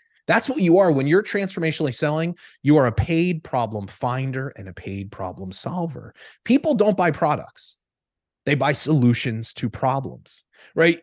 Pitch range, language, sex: 130-175 Hz, English, male